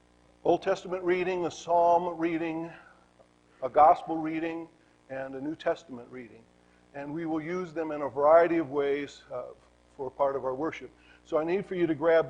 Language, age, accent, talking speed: English, 50-69, American, 175 wpm